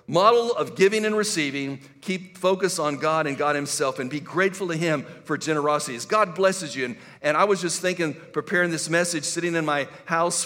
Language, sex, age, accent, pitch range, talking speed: English, male, 50-69, American, 145-180 Hz, 205 wpm